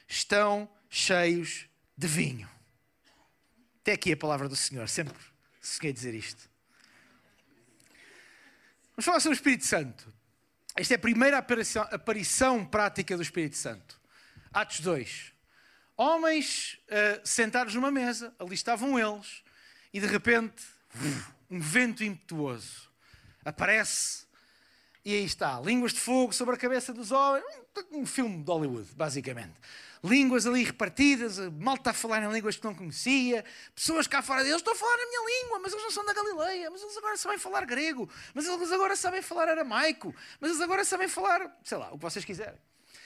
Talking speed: 160 wpm